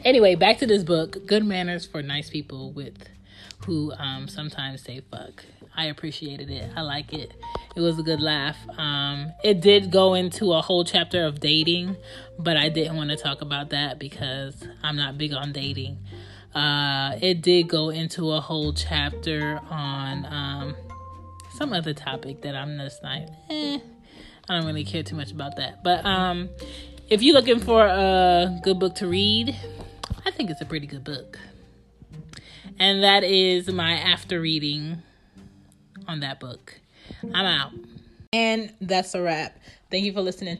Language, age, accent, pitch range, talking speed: English, 20-39, American, 140-185 Hz, 170 wpm